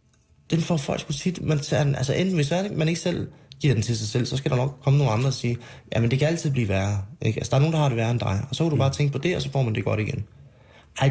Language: Danish